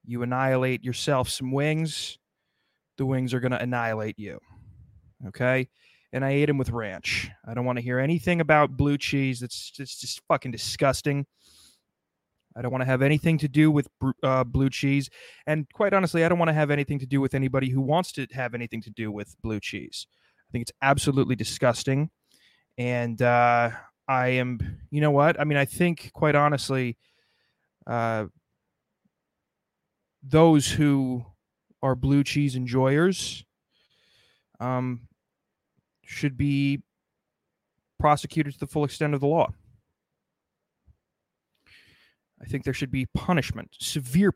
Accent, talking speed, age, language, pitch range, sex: American, 150 wpm, 20-39, English, 120-150 Hz, male